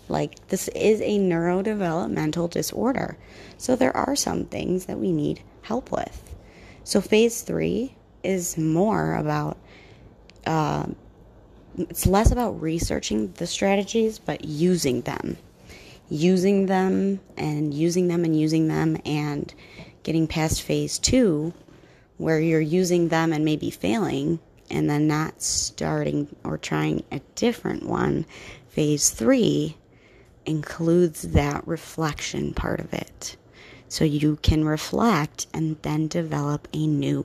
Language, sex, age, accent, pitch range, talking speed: English, female, 30-49, American, 145-175 Hz, 125 wpm